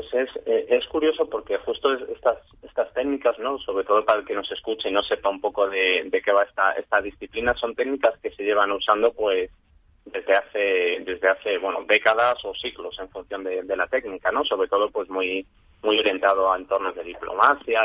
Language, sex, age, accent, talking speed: Spanish, male, 30-49, Spanish, 210 wpm